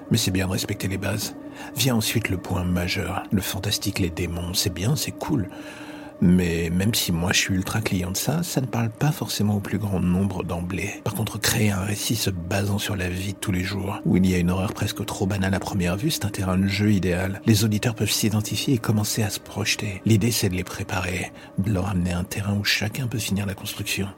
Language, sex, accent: French, male, French